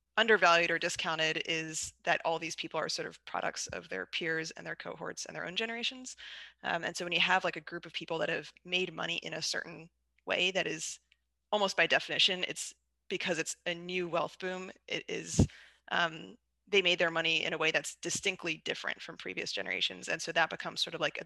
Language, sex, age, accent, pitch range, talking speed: English, female, 20-39, American, 155-180 Hz, 215 wpm